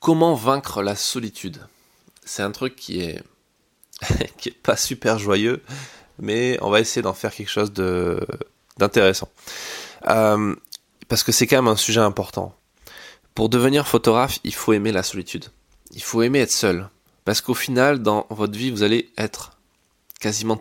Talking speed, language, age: 165 wpm, French, 20-39